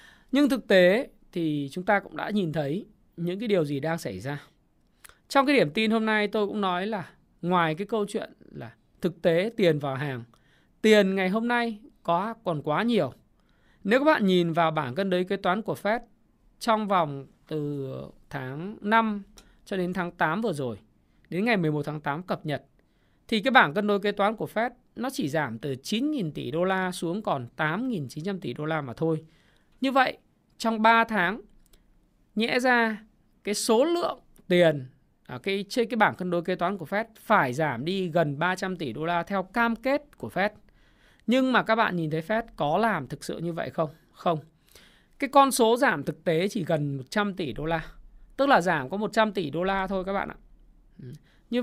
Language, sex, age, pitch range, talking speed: Vietnamese, male, 20-39, 160-220 Hz, 205 wpm